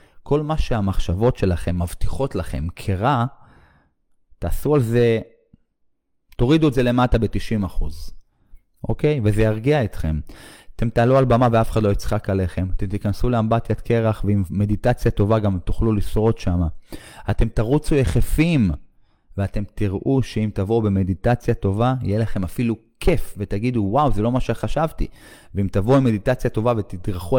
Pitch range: 95-120 Hz